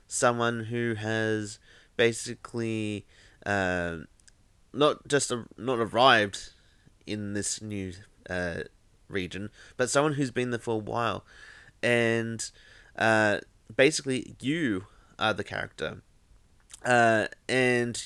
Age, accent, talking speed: 20-39, Australian, 105 wpm